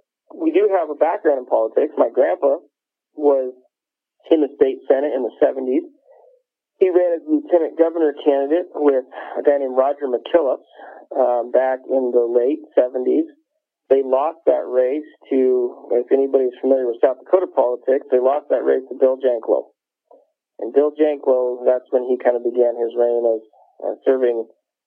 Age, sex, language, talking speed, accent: 40-59, male, English, 165 wpm, American